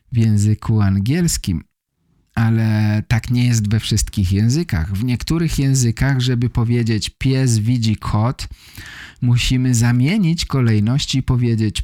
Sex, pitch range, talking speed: male, 100-135 Hz, 115 wpm